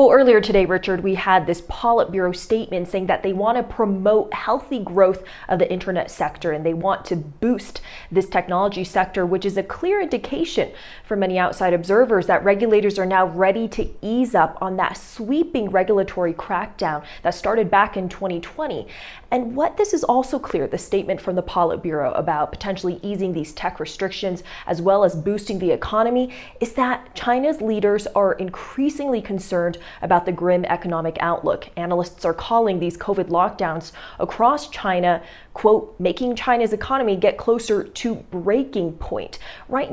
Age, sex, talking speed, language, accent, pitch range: 20-39, female, 165 wpm, English, American, 180-220 Hz